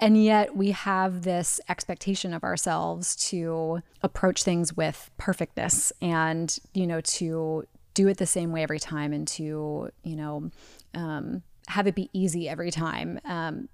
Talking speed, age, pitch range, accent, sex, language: 155 wpm, 20-39, 170-215 Hz, American, female, English